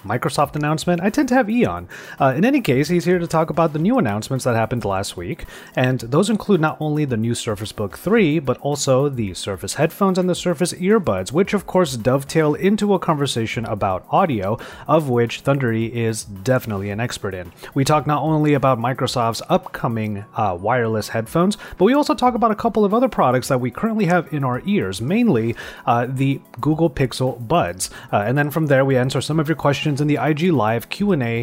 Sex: male